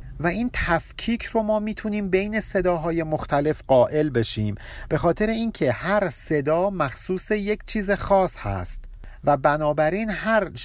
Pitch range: 125-180 Hz